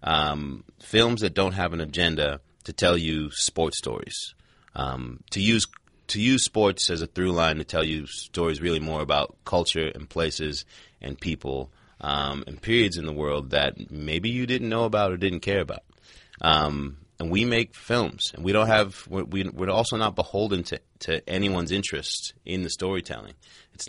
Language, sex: English, male